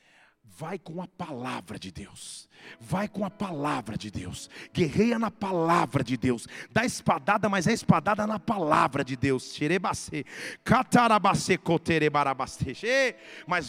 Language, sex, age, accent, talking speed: Portuguese, male, 40-59, Brazilian, 120 wpm